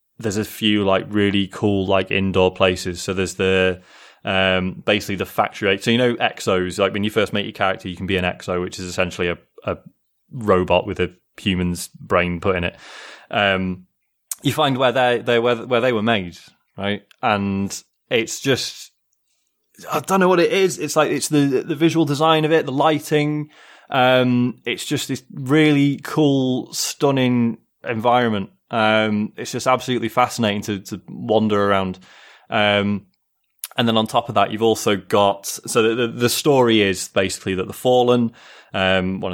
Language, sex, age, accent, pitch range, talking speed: English, male, 20-39, British, 95-130 Hz, 175 wpm